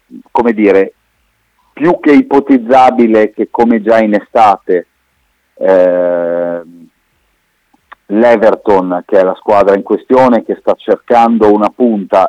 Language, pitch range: Italian, 95-115 Hz